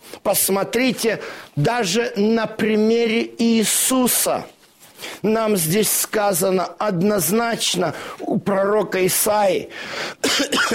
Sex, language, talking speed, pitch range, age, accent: male, Russian, 75 wpm, 190-235 Hz, 50-69, native